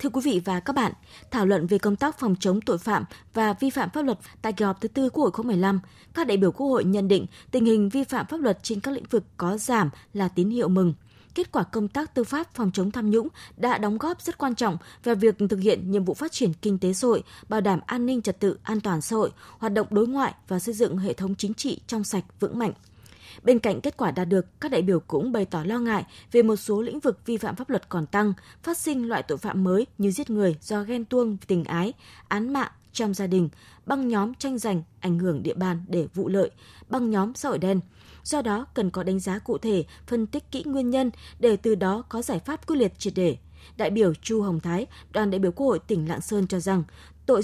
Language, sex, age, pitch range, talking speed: Vietnamese, female, 20-39, 190-245 Hz, 255 wpm